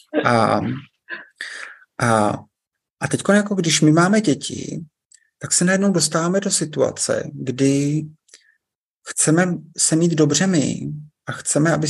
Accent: native